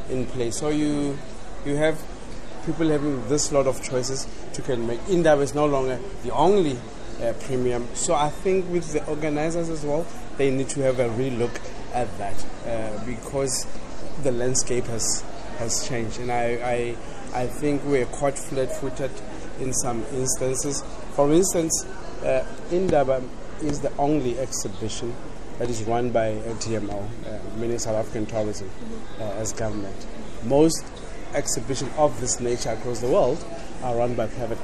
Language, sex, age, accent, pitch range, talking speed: English, male, 30-49, South African, 115-140 Hz, 160 wpm